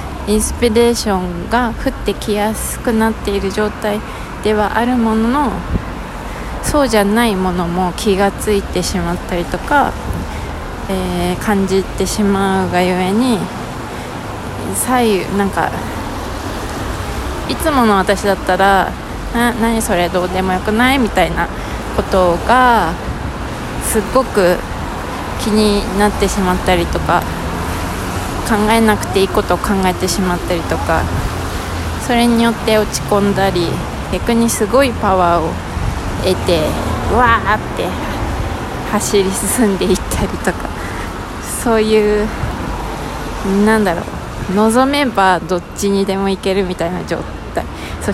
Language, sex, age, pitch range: Japanese, female, 20-39, 180-215 Hz